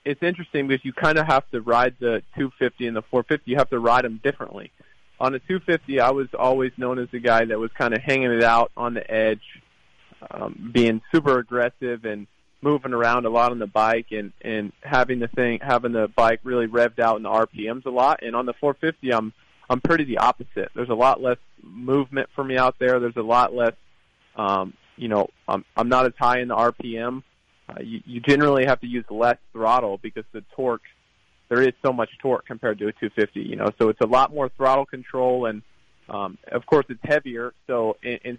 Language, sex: English, male